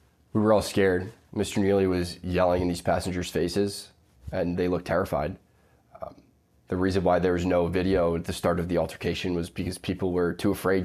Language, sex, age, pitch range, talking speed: English, male, 20-39, 90-100 Hz, 200 wpm